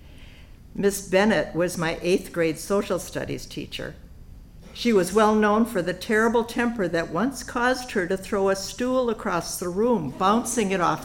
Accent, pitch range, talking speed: American, 175-215 Hz, 170 wpm